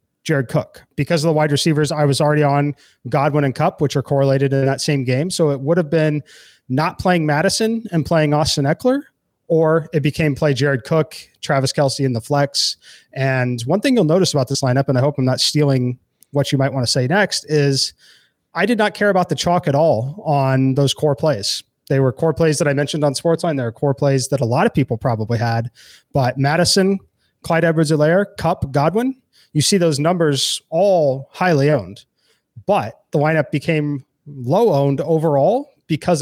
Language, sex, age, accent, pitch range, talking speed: English, male, 30-49, American, 130-160 Hz, 200 wpm